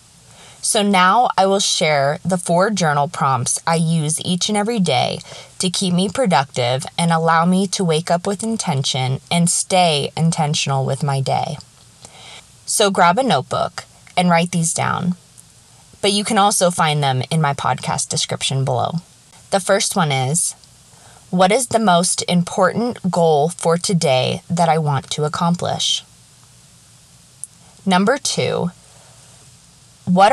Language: English